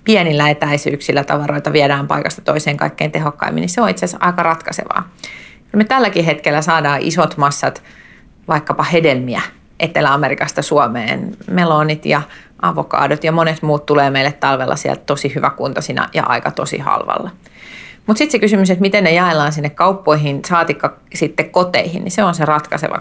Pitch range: 145-165 Hz